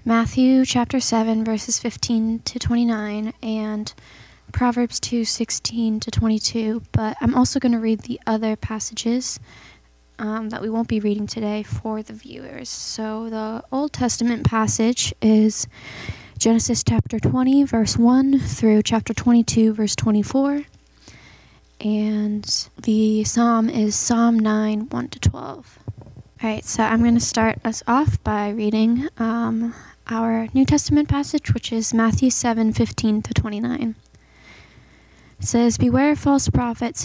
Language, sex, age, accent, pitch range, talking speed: English, female, 10-29, American, 215-235 Hz, 140 wpm